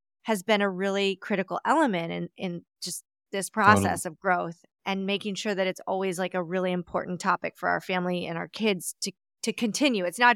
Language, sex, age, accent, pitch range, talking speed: English, female, 30-49, American, 170-195 Hz, 205 wpm